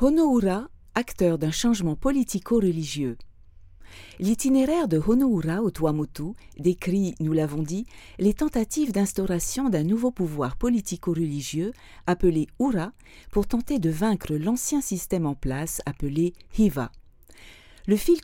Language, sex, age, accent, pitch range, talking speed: French, female, 40-59, French, 155-230 Hz, 115 wpm